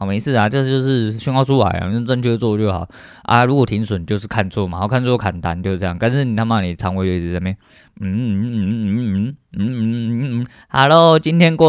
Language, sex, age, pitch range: Chinese, male, 20-39, 95-125 Hz